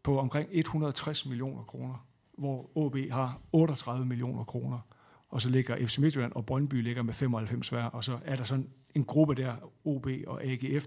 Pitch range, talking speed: 125-155 Hz, 180 wpm